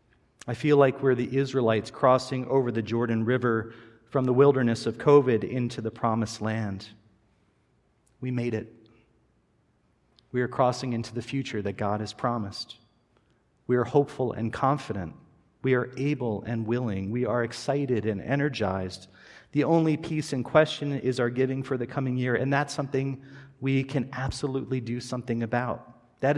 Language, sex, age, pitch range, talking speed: English, male, 40-59, 110-130 Hz, 160 wpm